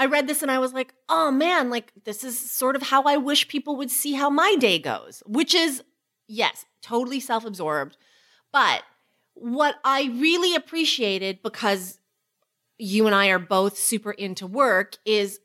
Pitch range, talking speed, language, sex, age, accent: 185-255 Hz, 170 wpm, English, female, 30-49, American